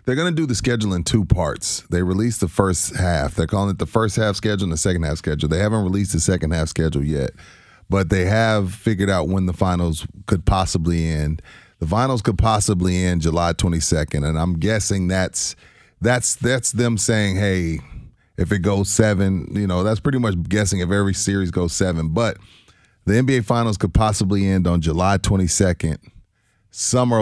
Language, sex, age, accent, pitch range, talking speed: English, male, 30-49, American, 85-110 Hz, 195 wpm